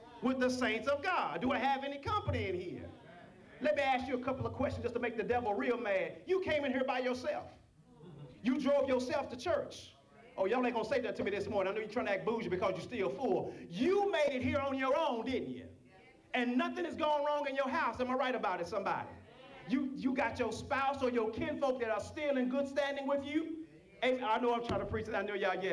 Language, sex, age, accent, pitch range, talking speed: English, male, 40-59, American, 225-290 Hz, 260 wpm